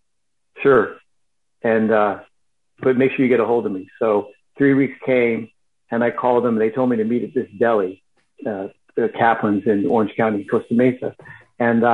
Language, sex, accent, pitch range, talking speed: English, male, American, 110-125 Hz, 190 wpm